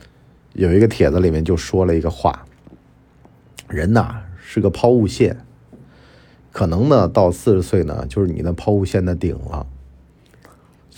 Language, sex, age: Chinese, male, 50-69